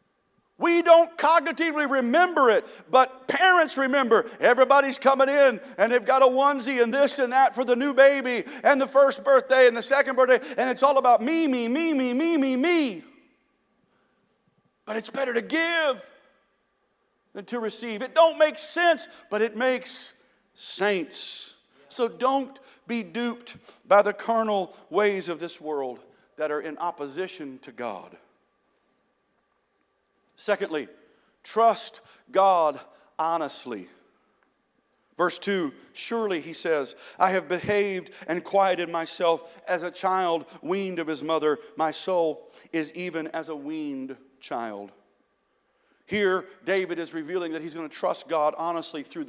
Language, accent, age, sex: English, American, 50-69, male